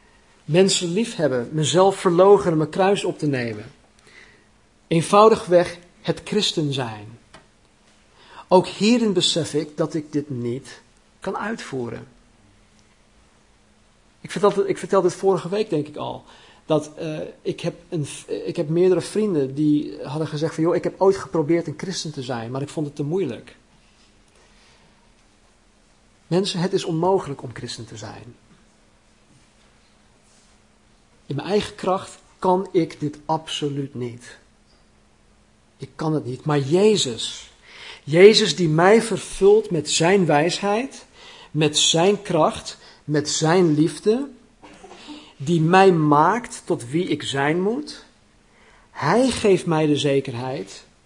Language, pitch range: Dutch, 140-185 Hz